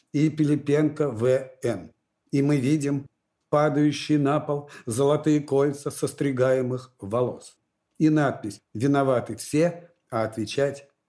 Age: 50-69